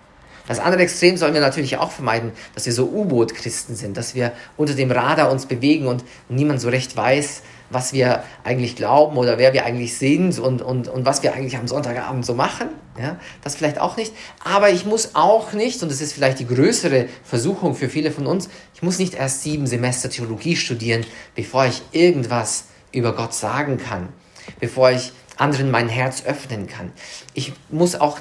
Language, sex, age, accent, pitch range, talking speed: English, male, 50-69, German, 115-150 Hz, 190 wpm